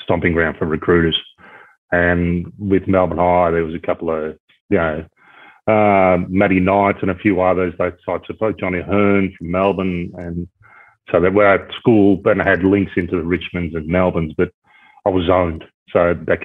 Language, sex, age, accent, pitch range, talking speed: English, male, 30-49, Australian, 85-100 Hz, 180 wpm